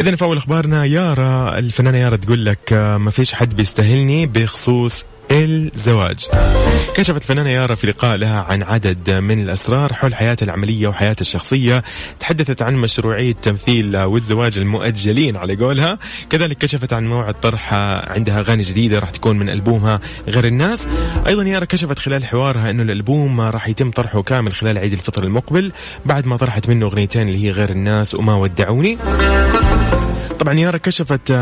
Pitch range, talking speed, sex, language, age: 105-130 Hz, 155 wpm, male, English, 20-39